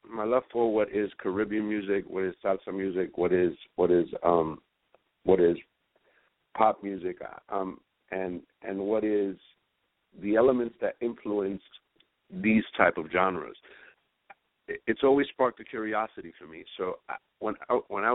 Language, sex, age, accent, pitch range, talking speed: English, male, 50-69, American, 95-115 Hz, 150 wpm